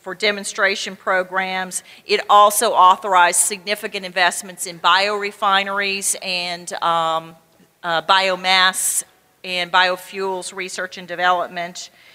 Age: 40-59